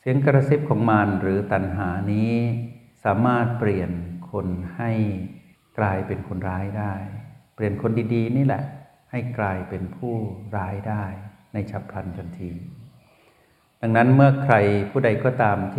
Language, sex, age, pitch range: Thai, male, 60-79, 95-115 Hz